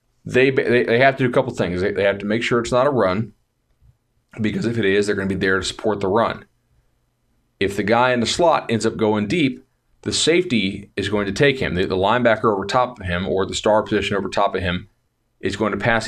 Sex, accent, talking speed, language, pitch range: male, American, 245 wpm, English, 100-120 Hz